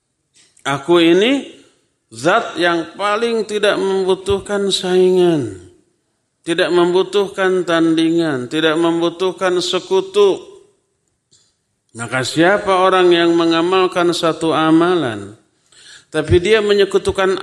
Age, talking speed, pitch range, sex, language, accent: 50-69, 85 wpm, 140-190 Hz, male, Indonesian, native